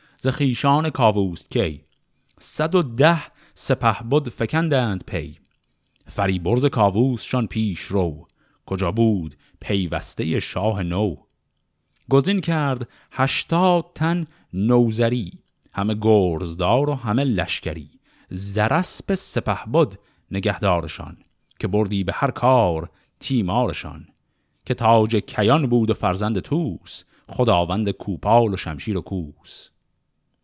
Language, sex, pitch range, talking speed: Persian, male, 95-135 Hz, 100 wpm